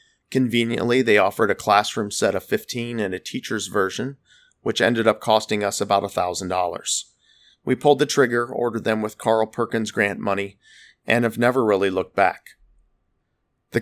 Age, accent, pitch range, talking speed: 40-59, American, 100-120 Hz, 160 wpm